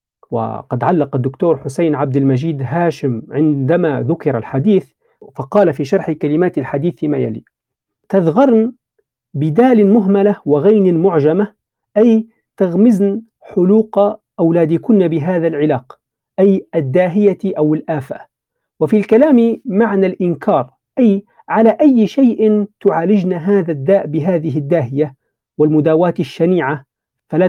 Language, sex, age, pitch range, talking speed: Arabic, male, 50-69, 150-210 Hz, 105 wpm